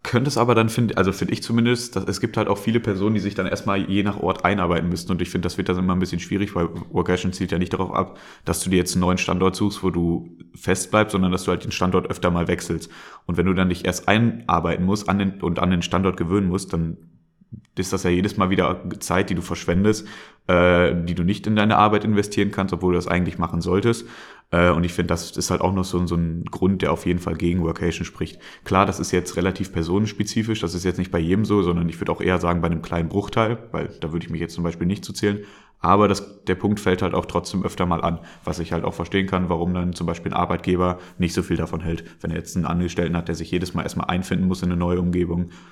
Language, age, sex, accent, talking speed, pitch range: German, 30-49, male, German, 265 wpm, 85-95 Hz